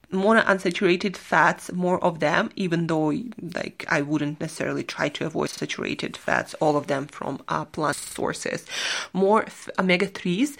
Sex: female